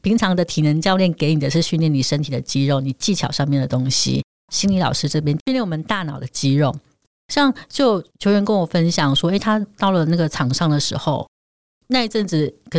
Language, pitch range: Chinese, 140-180 Hz